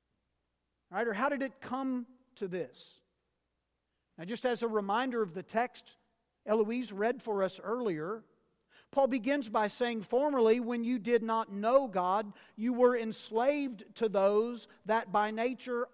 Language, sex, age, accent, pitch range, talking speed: English, male, 50-69, American, 195-240 Hz, 145 wpm